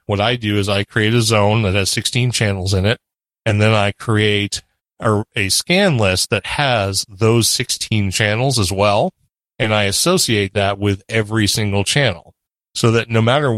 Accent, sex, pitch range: American, male, 100-120 Hz